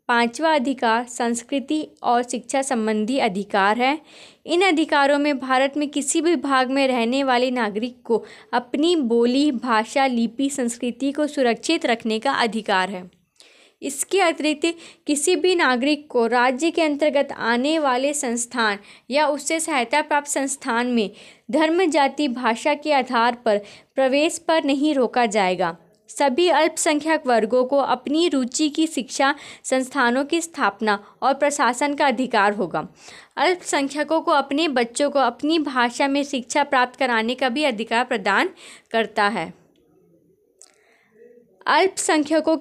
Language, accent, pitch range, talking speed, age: Hindi, native, 235-300 Hz, 135 wpm, 20-39